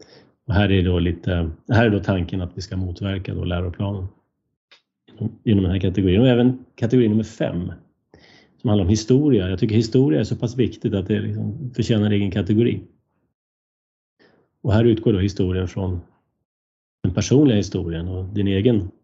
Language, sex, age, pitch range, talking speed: Swedish, male, 30-49, 95-115 Hz, 175 wpm